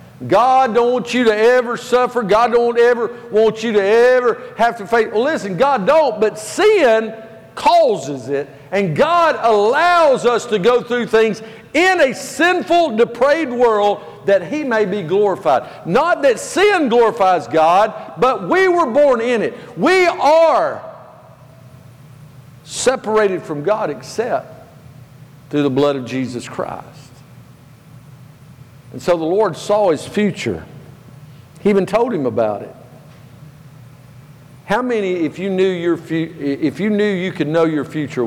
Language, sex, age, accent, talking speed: English, male, 50-69, American, 145 wpm